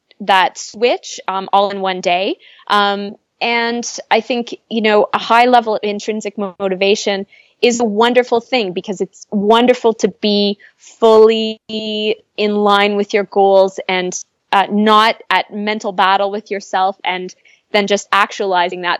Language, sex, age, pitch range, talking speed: English, female, 20-39, 200-235 Hz, 150 wpm